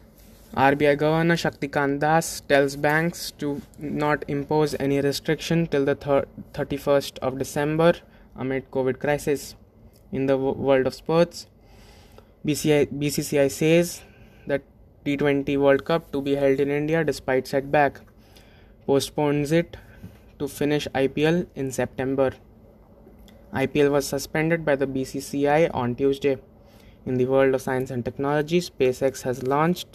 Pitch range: 130-150 Hz